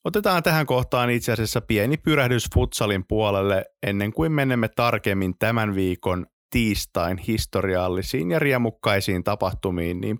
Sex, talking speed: male, 120 wpm